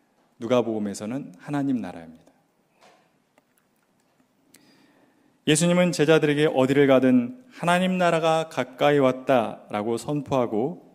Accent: native